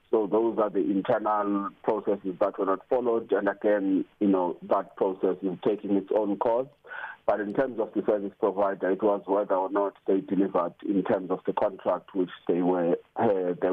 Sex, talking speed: male, 190 wpm